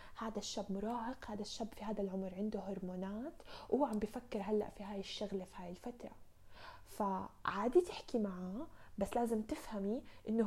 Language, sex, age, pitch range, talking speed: Arabic, female, 20-39, 205-250 Hz, 155 wpm